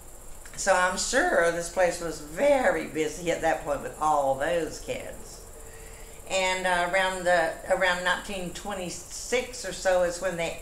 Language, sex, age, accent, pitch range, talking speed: English, female, 60-79, American, 150-185 Hz, 145 wpm